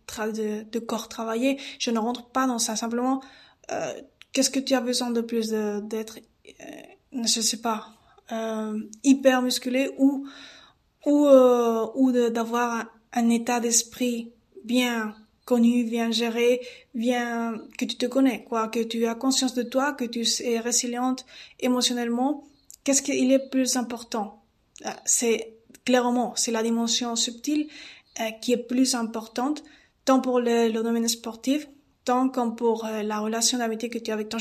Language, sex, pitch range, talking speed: French, female, 230-260 Hz, 165 wpm